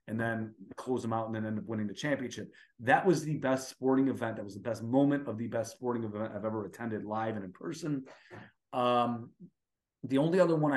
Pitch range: 110-125 Hz